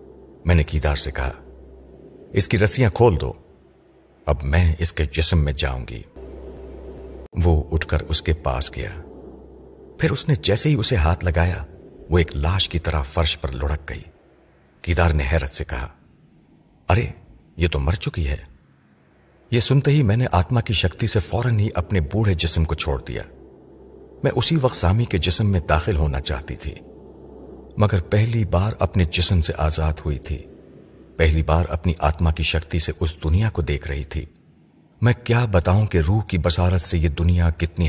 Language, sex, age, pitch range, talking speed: Urdu, male, 50-69, 75-95 Hz, 180 wpm